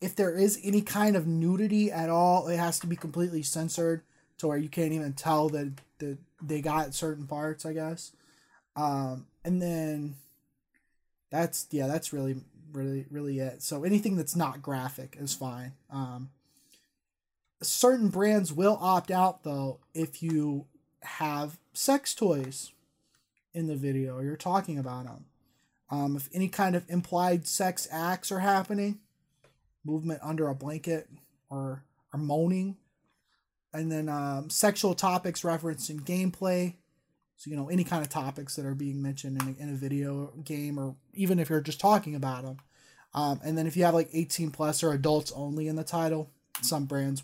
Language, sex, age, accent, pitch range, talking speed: English, male, 20-39, American, 140-175 Hz, 165 wpm